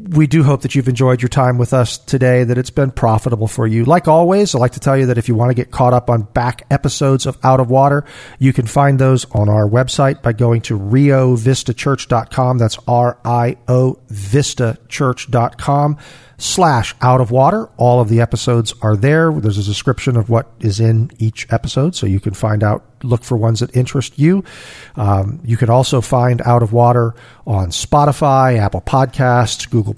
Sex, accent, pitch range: male, American, 115-140 Hz